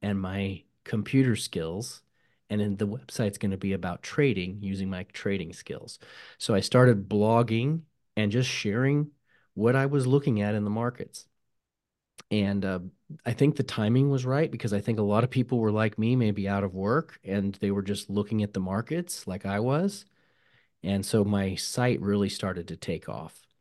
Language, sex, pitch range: English, male, 95-120 Hz